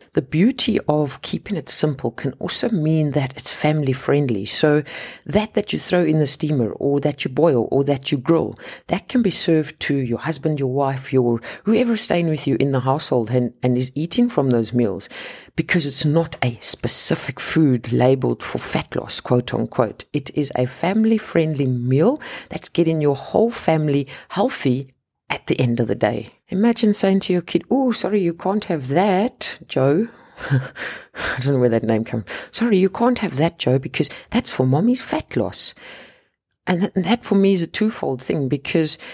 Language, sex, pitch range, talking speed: English, female, 130-175 Hz, 185 wpm